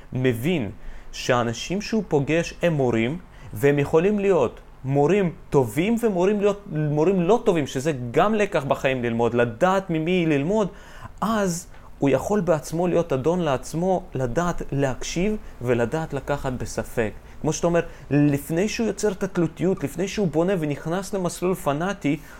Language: Hebrew